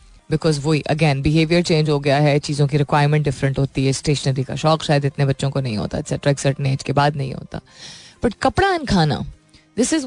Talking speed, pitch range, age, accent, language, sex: 220 wpm, 150-205 Hz, 20-39, native, Hindi, female